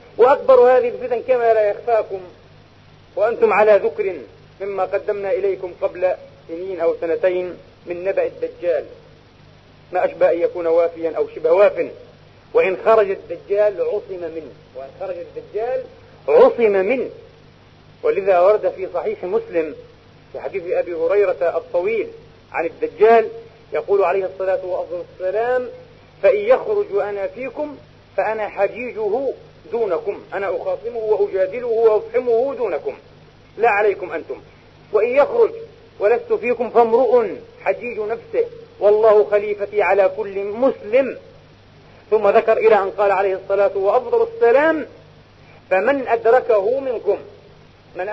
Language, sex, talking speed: Arabic, male, 115 wpm